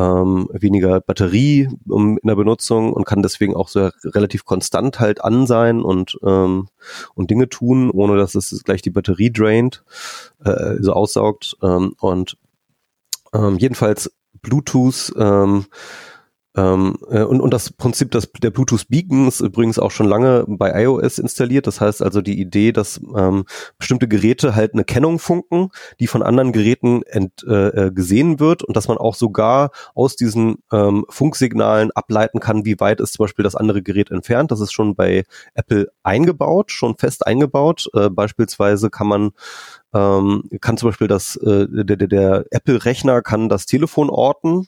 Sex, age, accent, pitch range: male, 30-49, German, 100-125 Hz